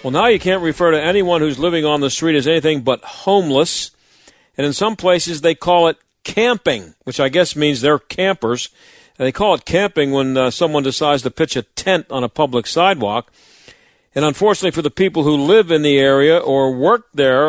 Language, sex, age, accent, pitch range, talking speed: English, male, 50-69, American, 135-175 Hz, 200 wpm